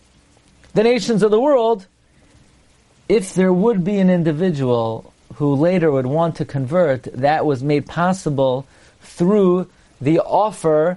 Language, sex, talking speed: English, male, 130 wpm